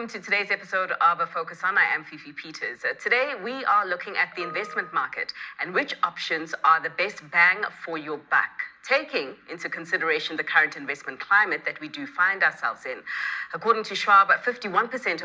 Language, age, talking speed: English, 30-49, 180 wpm